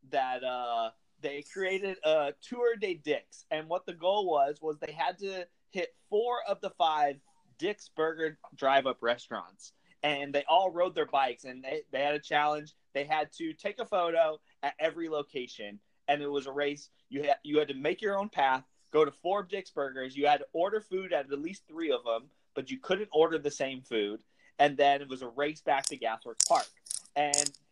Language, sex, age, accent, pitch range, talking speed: English, male, 30-49, American, 135-180 Hz, 205 wpm